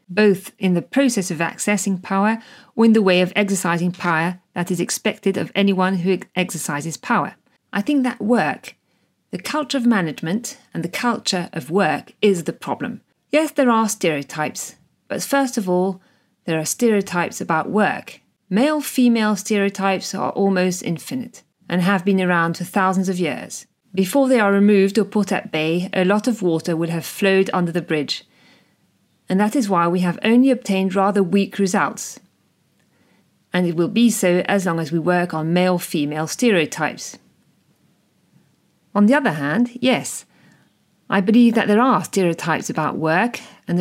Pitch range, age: 175-225 Hz, 40-59